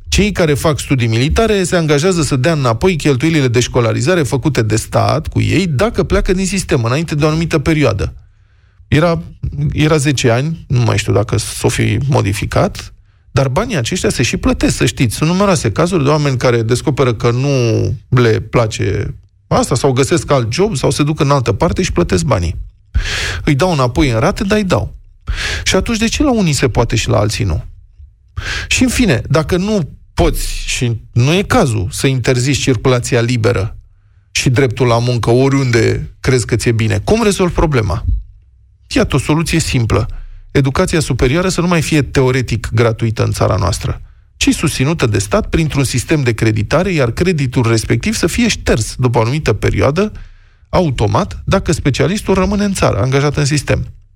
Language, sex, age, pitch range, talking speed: Romanian, male, 20-39, 110-160 Hz, 175 wpm